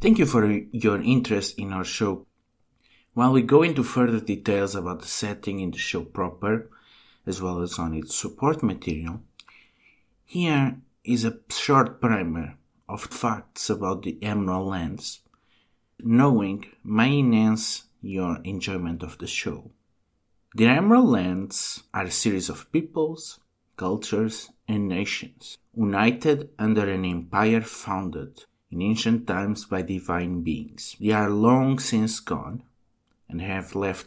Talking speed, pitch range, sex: 135 wpm, 90-115 Hz, male